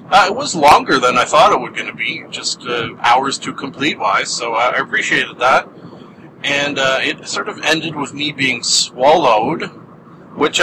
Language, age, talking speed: English, 30-49, 180 wpm